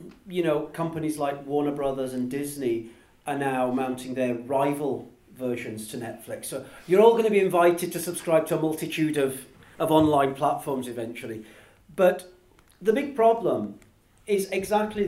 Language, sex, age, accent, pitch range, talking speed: English, male, 40-59, British, 145-220 Hz, 155 wpm